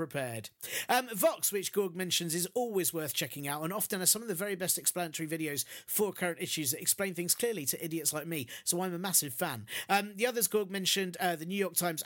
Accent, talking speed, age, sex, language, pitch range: British, 235 wpm, 40-59, male, English, 160-210 Hz